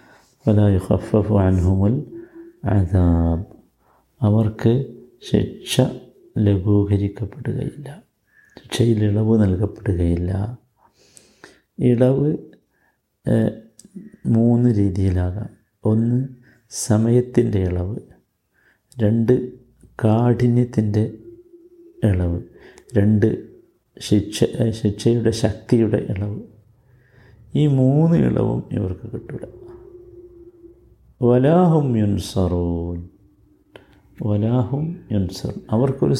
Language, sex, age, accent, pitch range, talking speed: Malayalam, male, 50-69, native, 100-125 Hz, 50 wpm